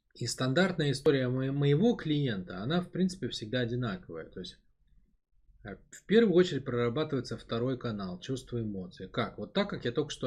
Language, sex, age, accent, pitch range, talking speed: Russian, male, 20-39, native, 100-130 Hz, 160 wpm